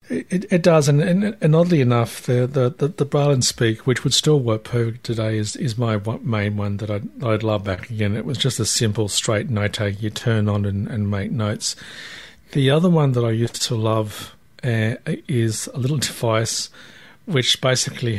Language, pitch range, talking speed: English, 105-125 Hz, 195 wpm